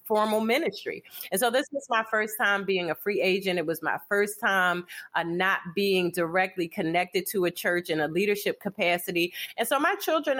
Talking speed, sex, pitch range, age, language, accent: 195 wpm, female, 175-215 Hz, 30-49, English, American